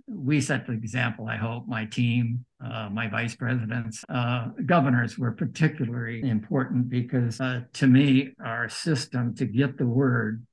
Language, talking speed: English, 155 wpm